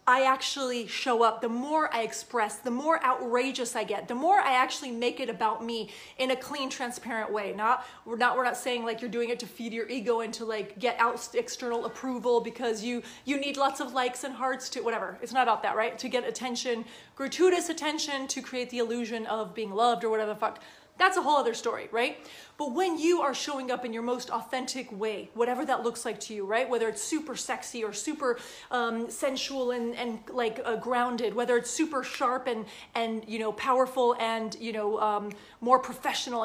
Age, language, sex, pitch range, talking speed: 30-49, English, female, 230-265 Hz, 215 wpm